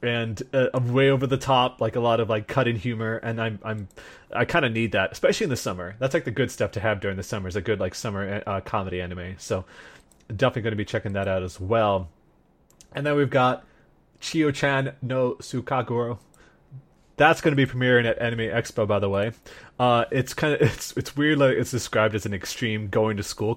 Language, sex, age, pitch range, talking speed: English, male, 30-49, 105-130 Hz, 225 wpm